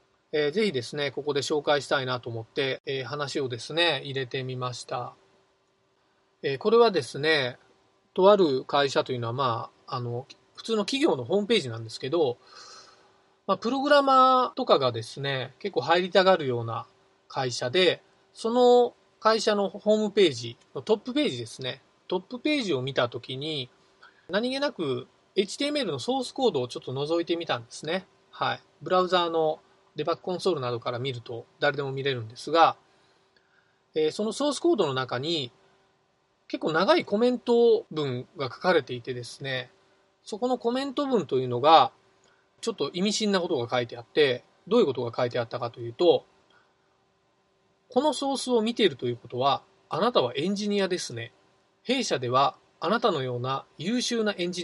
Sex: male